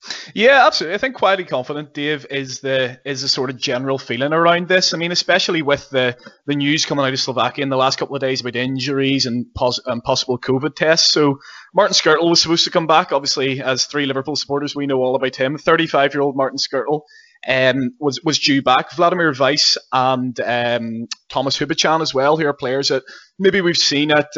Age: 20-39